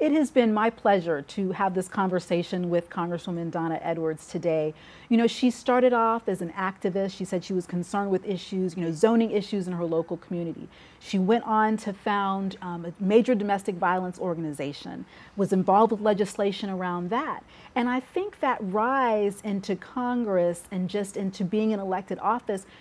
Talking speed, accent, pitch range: 180 wpm, American, 180-220 Hz